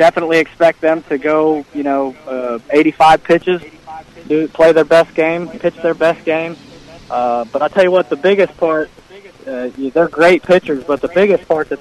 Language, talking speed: English, 180 wpm